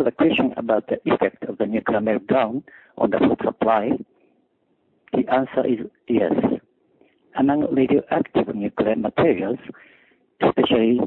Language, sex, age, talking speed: English, male, 60-79, 120 wpm